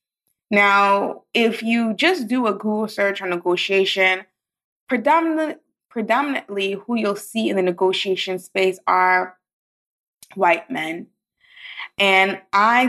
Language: English